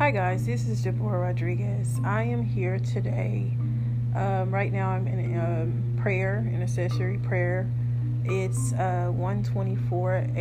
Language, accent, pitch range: English, American, 115-120 Hz